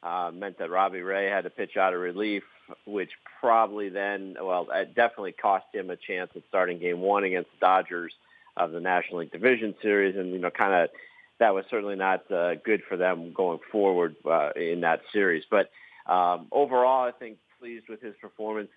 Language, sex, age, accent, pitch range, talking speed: English, male, 40-59, American, 85-100 Hz, 200 wpm